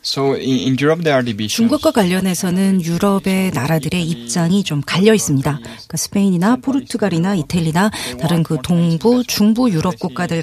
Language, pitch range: Korean, 165-225 Hz